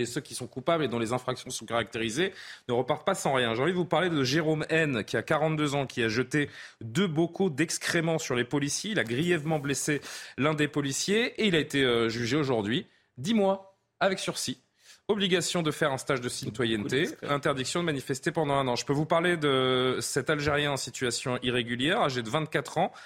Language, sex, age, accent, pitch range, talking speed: French, male, 30-49, French, 120-160 Hz, 210 wpm